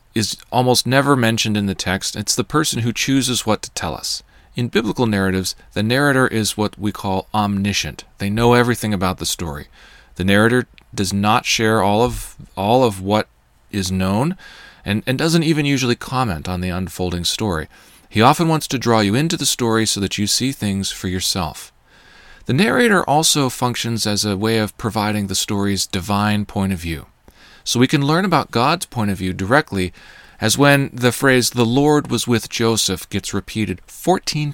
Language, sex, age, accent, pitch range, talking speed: English, male, 40-59, American, 95-125 Hz, 185 wpm